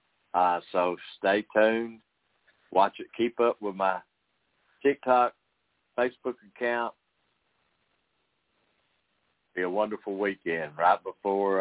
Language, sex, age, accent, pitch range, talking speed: English, male, 60-79, American, 90-110 Hz, 100 wpm